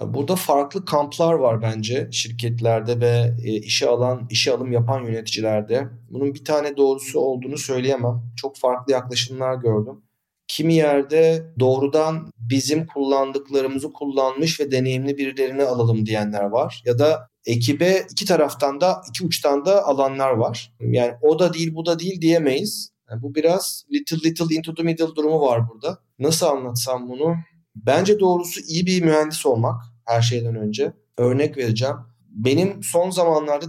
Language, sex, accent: Turkish, male, native